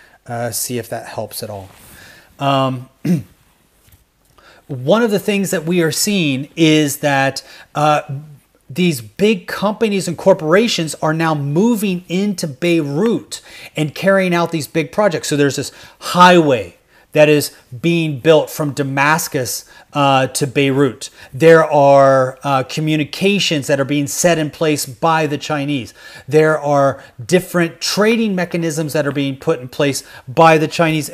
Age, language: 30-49, English